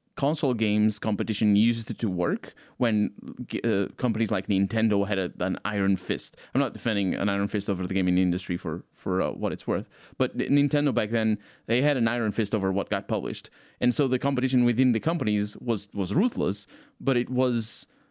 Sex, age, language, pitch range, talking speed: male, 20-39, English, 100-125 Hz, 190 wpm